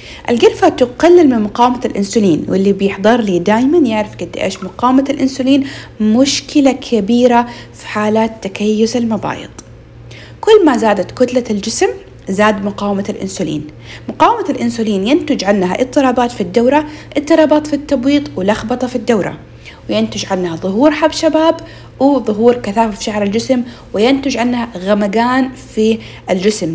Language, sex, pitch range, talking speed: Arabic, female, 200-265 Hz, 125 wpm